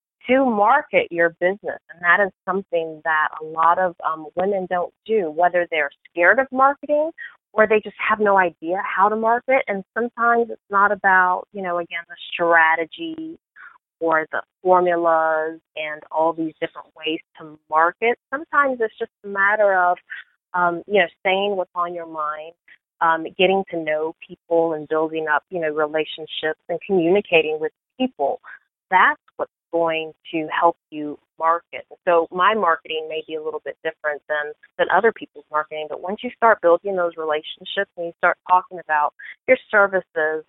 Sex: female